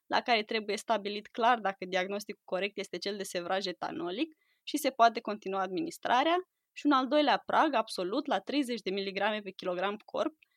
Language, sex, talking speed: Romanian, female, 175 wpm